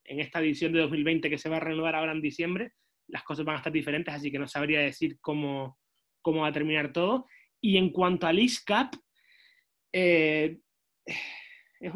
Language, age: English, 20-39